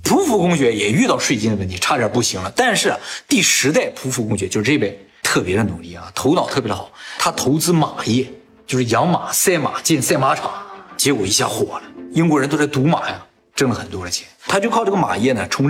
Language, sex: Chinese, male